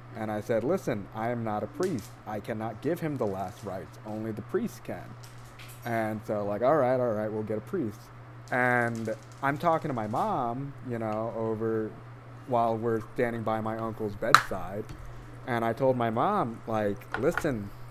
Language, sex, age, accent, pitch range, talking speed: English, male, 20-39, American, 115-130 Hz, 180 wpm